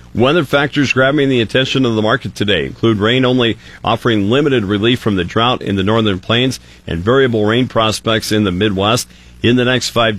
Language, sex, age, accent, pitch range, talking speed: English, male, 50-69, American, 100-125 Hz, 195 wpm